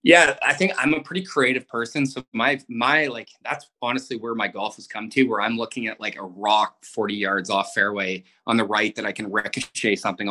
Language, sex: English, male